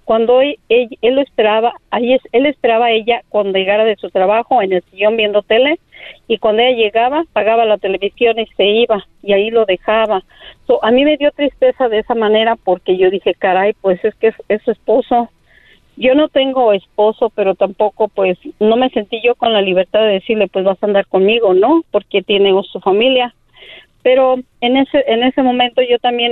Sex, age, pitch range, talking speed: female, 40-59, 200-240 Hz, 205 wpm